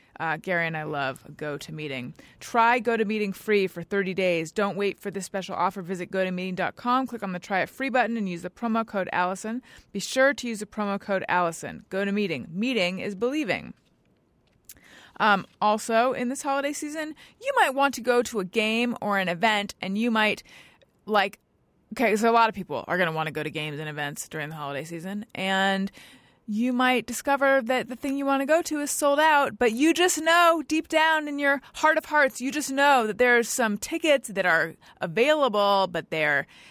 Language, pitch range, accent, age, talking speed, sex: English, 190-255 Hz, American, 30-49, 205 wpm, female